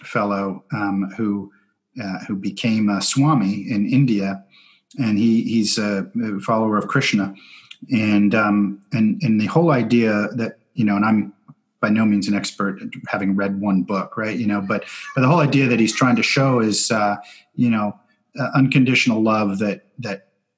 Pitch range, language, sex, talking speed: 100-120 Hz, English, male, 180 wpm